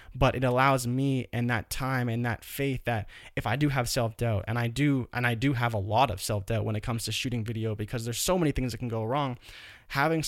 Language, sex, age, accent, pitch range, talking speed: English, male, 20-39, American, 110-135 Hz, 250 wpm